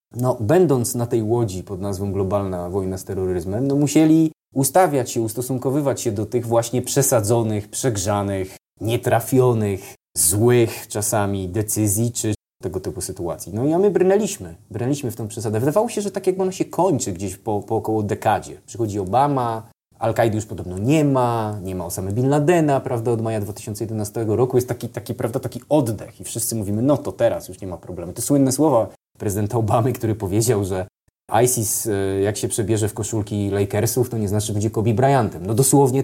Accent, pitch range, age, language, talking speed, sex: native, 105-130 Hz, 20-39, Polish, 180 wpm, male